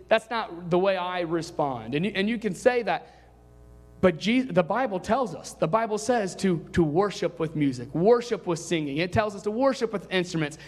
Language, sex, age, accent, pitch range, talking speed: English, male, 30-49, American, 170-225 Hz, 210 wpm